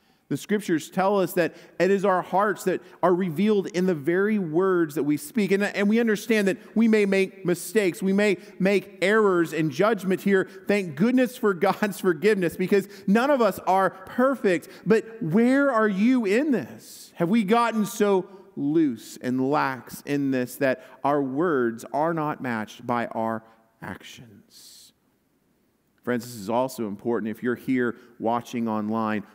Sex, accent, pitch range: male, American, 125-195 Hz